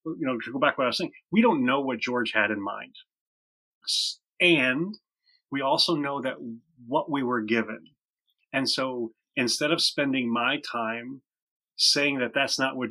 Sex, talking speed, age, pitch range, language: male, 180 wpm, 30-49, 115-155 Hz, English